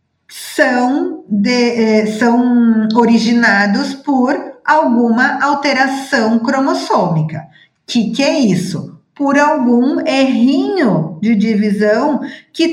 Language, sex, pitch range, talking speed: Portuguese, female, 210-285 Hz, 85 wpm